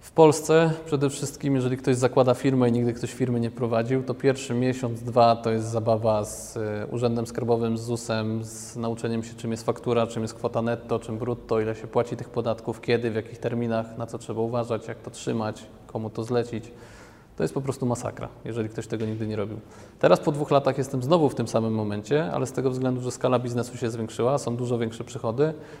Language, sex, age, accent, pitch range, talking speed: Polish, male, 20-39, native, 110-130 Hz, 210 wpm